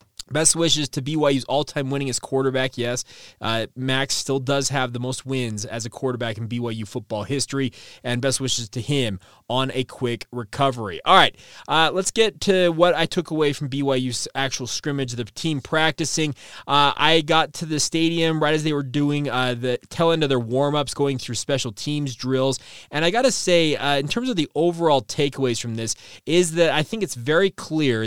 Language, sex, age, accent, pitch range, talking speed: English, male, 20-39, American, 125-155 Hz, 195 wpm